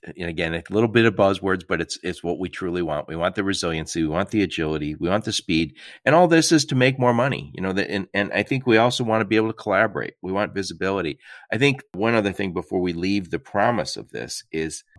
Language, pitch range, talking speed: English, 90-120 Hz, 265 wpm